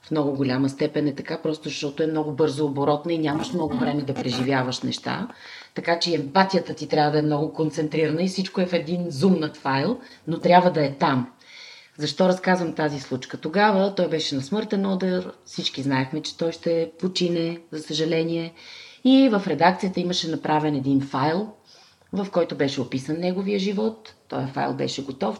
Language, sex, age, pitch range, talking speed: Bulgarian, female, 30-49, 145-185 Hz, 175 wpm